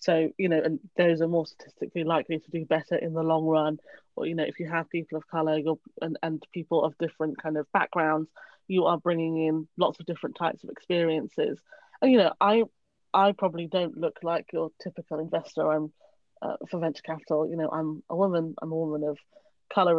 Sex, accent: female, British